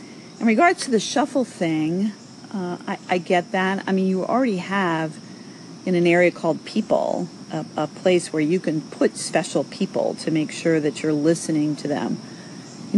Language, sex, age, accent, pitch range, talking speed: English, female, 40-59, American, 150-185 Hz, 180 wpm